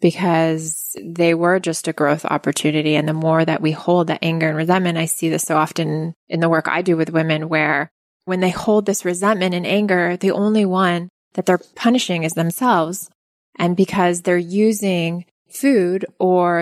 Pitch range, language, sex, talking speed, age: 170-200 Hz, English, female, 185 wpm, 20-39